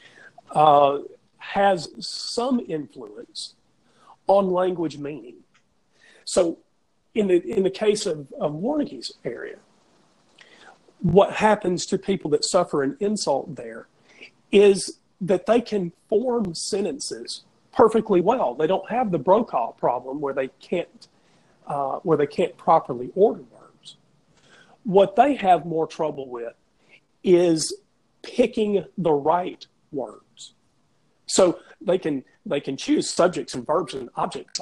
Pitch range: 150-210 Hz